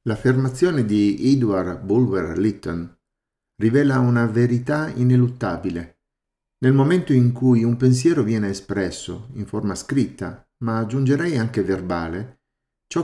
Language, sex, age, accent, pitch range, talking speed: Italian, male, 50-69, native, 100-130 Hz, 110 wpm